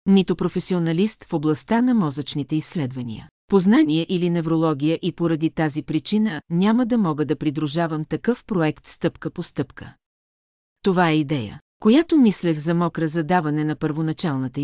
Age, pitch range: 40-59, 155-185 Hz